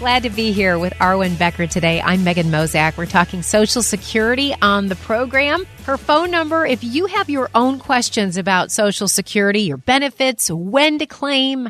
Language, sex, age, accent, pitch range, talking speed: English, female, 30-49, American, 185-255 Hz, 180 wpm